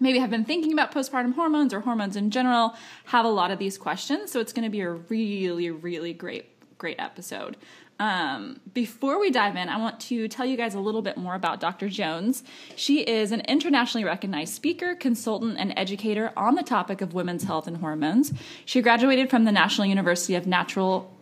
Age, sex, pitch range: 10-29, female, 190-255 Hz